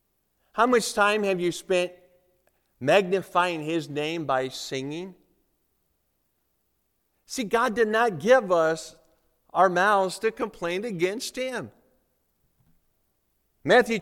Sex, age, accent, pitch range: male, 50-69, American, 180-220 Hz